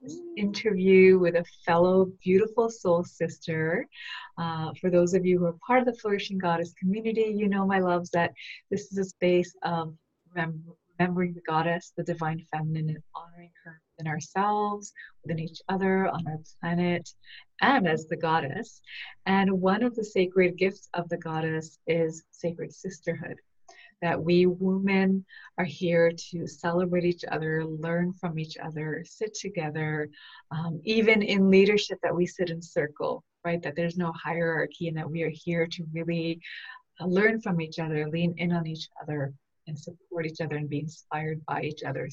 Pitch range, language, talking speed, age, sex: 165-195 Hz, English, 170 wpm, 30-49, female